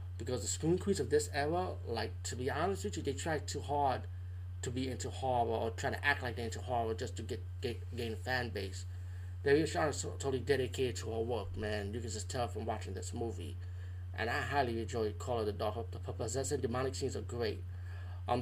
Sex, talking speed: male, 220 wpm